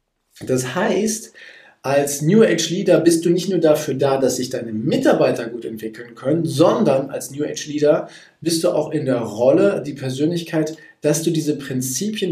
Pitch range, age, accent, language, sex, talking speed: 130-165 Hz, 40-59, German, German, male, 175 wpm